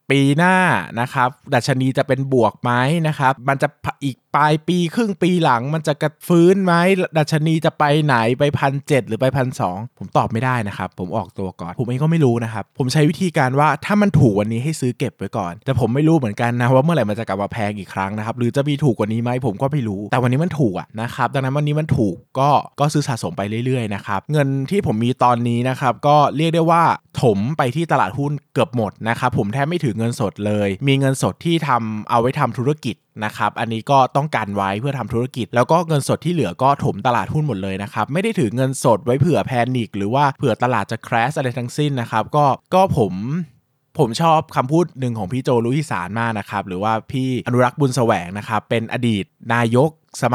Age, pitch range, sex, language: 20-39, 115-150 Hz, male, Thai